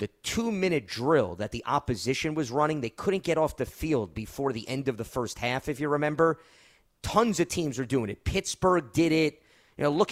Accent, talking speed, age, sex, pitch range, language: American, 215 wpm, 30-49, male, 125-170 Hz, English